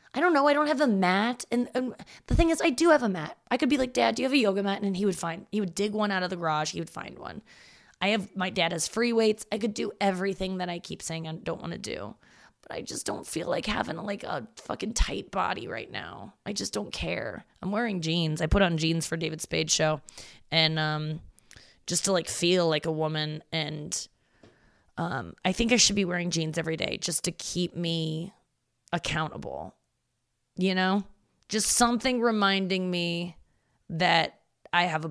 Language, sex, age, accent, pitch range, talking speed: English, female, 20-39, American, 165-205 Hz, 220 wpm